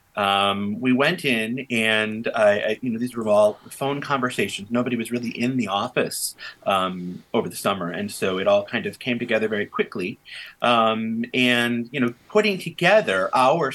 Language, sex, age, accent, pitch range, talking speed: English, male, 30-49, American, 100-155 Hz, 180 wpm